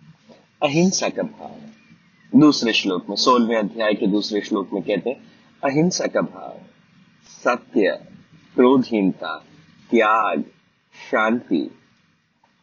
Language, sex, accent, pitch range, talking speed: Hindi, male, native, 115-185 Hz, 100 wpm